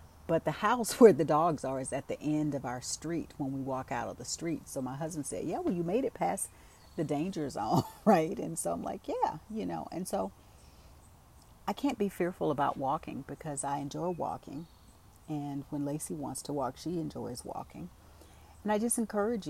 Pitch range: 130-175 Hz